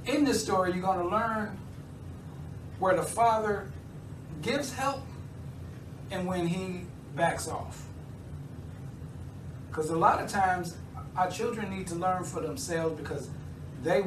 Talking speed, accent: 130 wpm, American